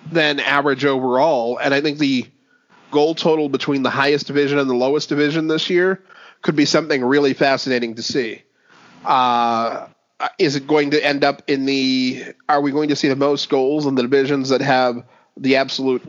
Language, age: English, 30-49